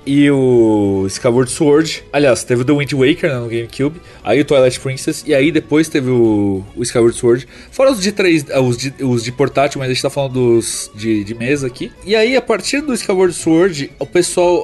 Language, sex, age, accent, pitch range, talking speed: Portuguese, male, 20-39, Brazilian, 120-165 Hz, 215 wpm